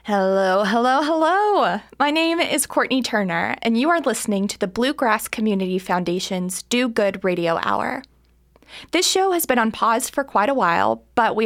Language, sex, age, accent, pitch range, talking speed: English, female, 20-39, American, 195-255 Hz, 175 wpm